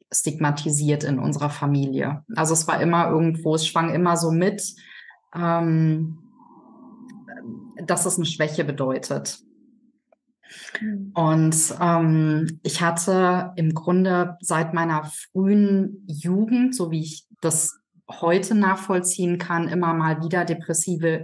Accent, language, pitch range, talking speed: German, German, 160-195 Hz, 115 wpm